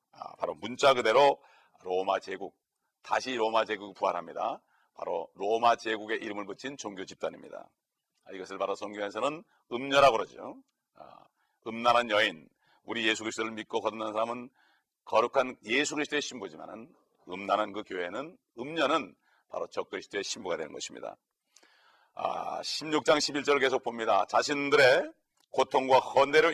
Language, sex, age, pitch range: Korean, male, 40-59, 115-155 Hz